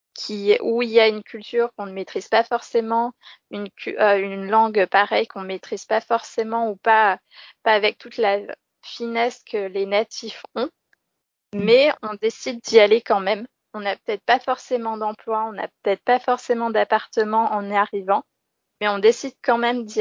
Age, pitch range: 20-39, 210-245 Hz